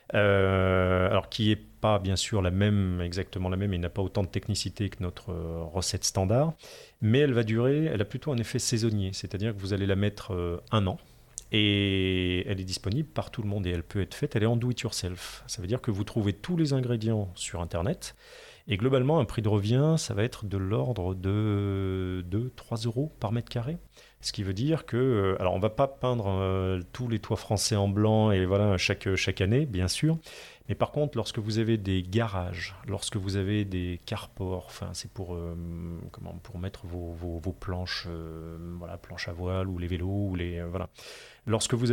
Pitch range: 95-115 Hz